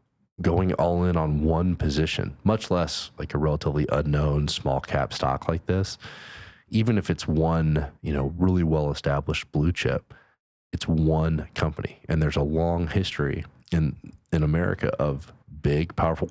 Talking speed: 150 wpm